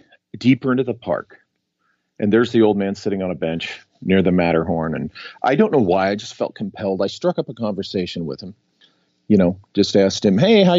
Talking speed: 215 wpm